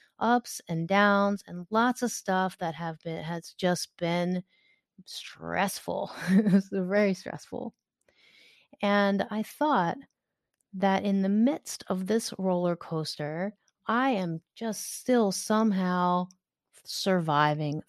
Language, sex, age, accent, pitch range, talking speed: English, female, 30-49, American, 170-215 Hz, 115 wpm